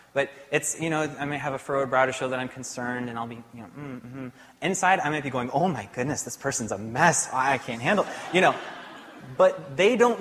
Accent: American